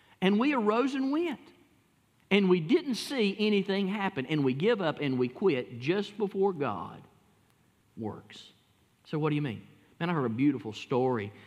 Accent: American